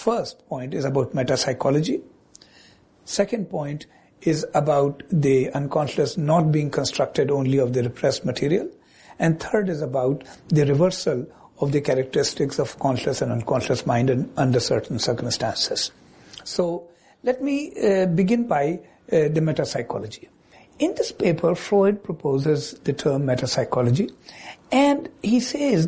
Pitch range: 140-215 Hz